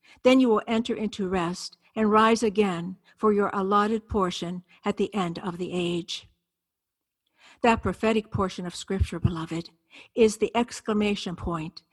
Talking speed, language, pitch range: 145 wpm, English, 180-215 Hz